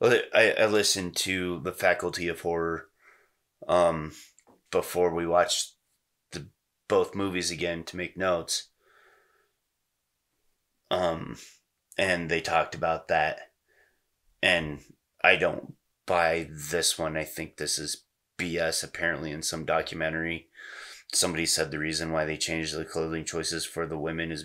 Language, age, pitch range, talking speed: English, 30-49, 80-95 Hz, 130 wpm